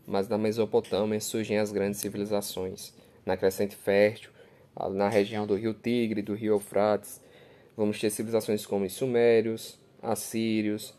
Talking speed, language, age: 135 wpm, Portuguese, 10-29